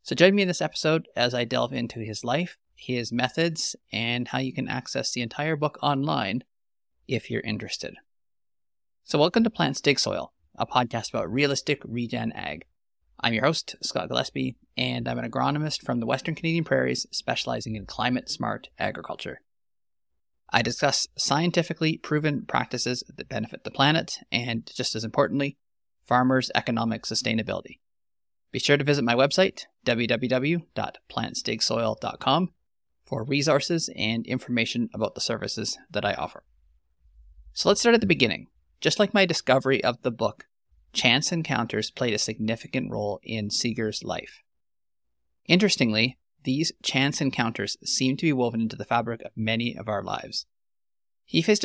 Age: 30-49